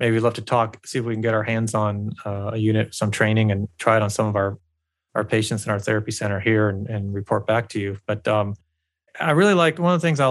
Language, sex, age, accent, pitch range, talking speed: English, male, 30-49, American, 105-125 Hz, 275 wpm